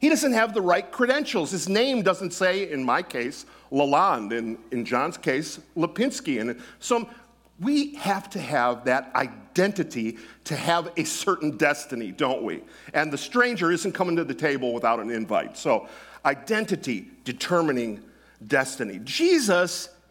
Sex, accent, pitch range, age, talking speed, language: male, American, 155-235 Hz, 50-69, 150 wpm, English